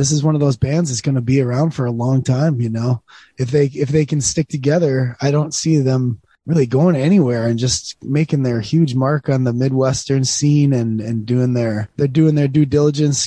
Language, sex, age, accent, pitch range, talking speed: English, male, 20-39, American, 120-145 Hz, 220 wpm